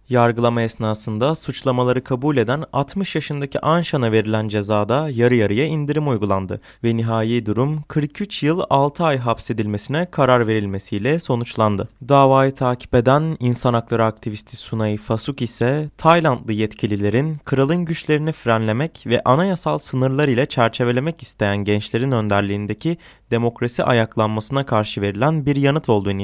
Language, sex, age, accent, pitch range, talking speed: Turkish, male, 20-39, native, 110-145 Hz, 125 wpm